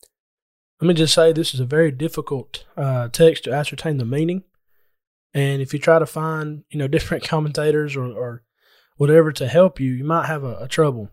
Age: 20-39